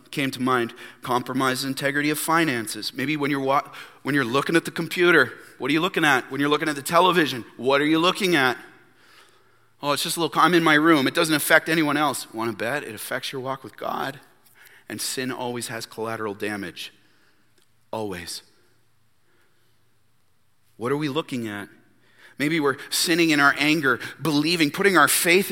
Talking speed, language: 185 wpm, English